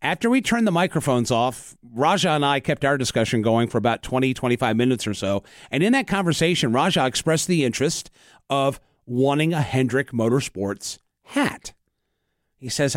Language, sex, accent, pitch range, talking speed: English, male, American, 130-185 Hz, 165 wpm